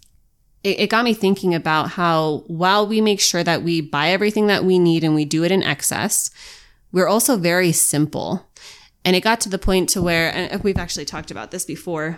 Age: 20-39